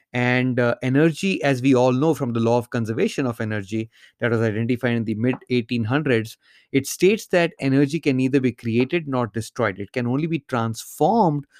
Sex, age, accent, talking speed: male, 30-49, Indian, 185 wpm